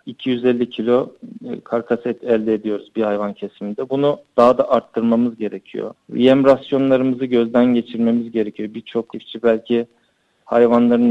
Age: 40-59